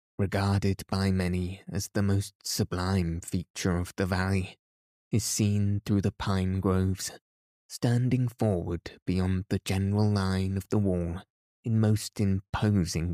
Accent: British